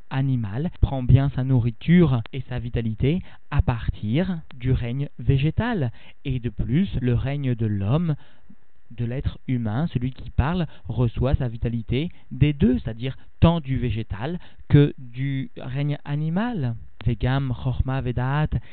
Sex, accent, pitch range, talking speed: male, French, 120-150 Hz, 130 wpm